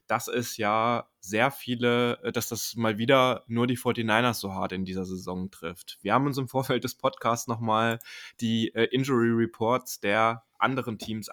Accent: German